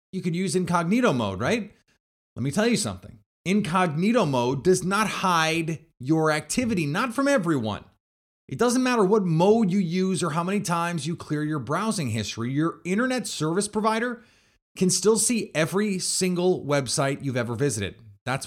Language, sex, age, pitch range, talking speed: English, male, 30-49, 135-185 Hz, 165 wpm